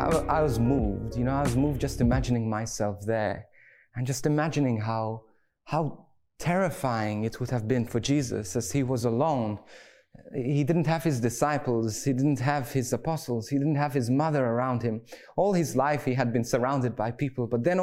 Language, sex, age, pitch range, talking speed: English, male, 30-49, 120-160 Hz, 190 wpm